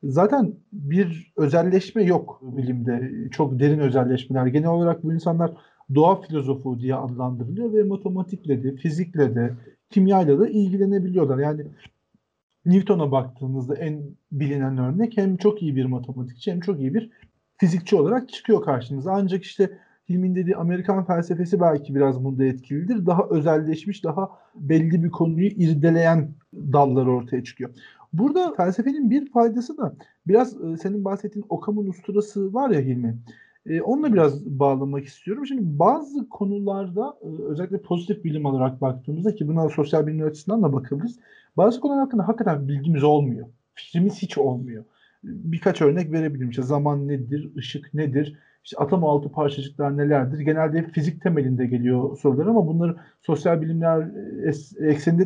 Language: Turkish